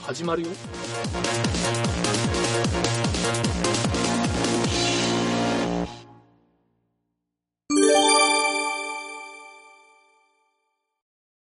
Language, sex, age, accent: Japanese, male, 40-59, native